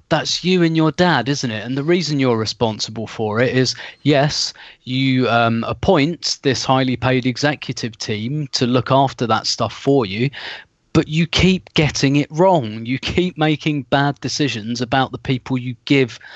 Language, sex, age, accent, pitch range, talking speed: English, male, 30-49, British, 120-140 Hz, 170 wpm